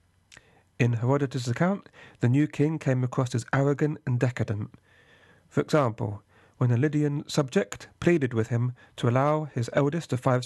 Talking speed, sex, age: 155 wpm, male, 40-59